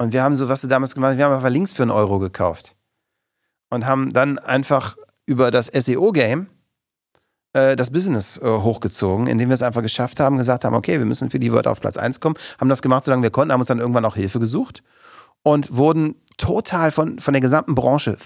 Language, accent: German, German